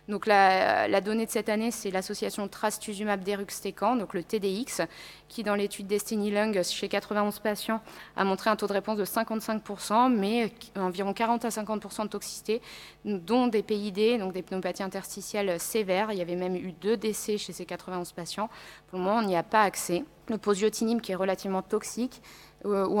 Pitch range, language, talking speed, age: 190-215 Hz, French, 180 wpm, 20-39